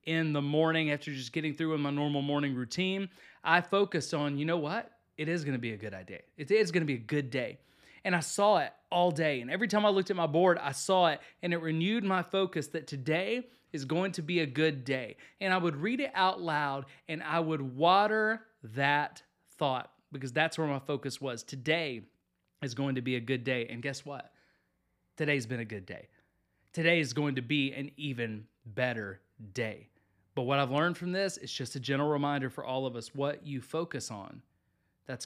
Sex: male